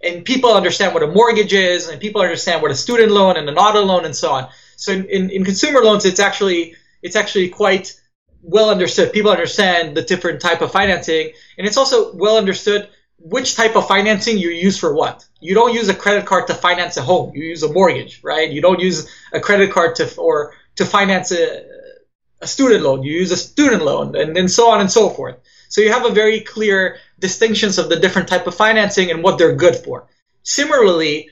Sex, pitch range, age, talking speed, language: male, 175-215 Hz, 20-39, 220 wpm, English